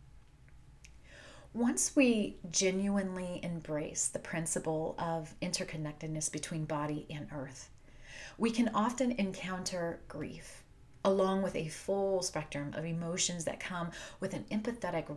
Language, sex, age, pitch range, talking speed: English, female, 30-49, 160-200 Hz, 115 wpm